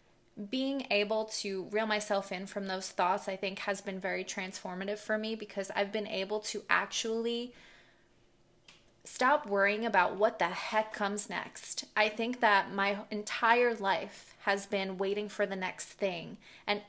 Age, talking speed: 20-39, 160 wpm